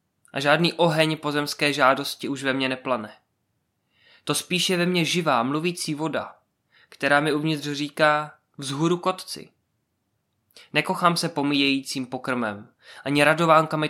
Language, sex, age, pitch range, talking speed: Czech, male, 20-39, 125-150 Hz, 120 wpm